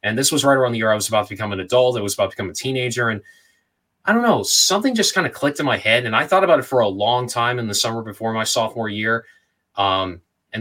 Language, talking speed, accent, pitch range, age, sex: English, 290 wpm, American, 105-125 Hz, 20-39, male